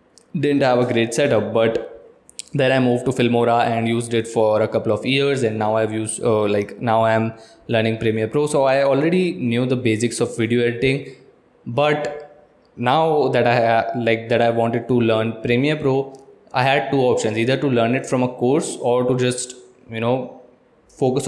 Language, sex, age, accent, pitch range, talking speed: Hindi, male, 20-39, native, 115-135 Hz, 195 wpm